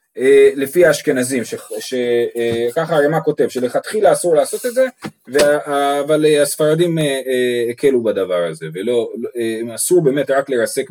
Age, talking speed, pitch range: 30-49, 155 wpm, 135-190 Hz